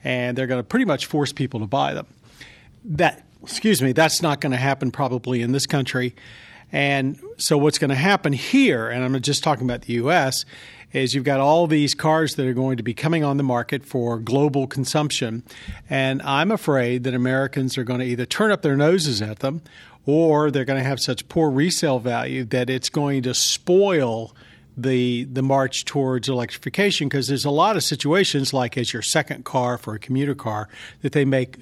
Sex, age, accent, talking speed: male, 50-69, American, 205 wpm